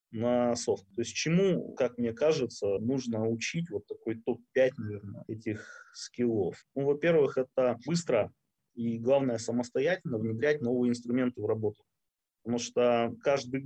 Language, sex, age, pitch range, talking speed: Russian, male, 20-39, 115-145 Hz, 135 wpm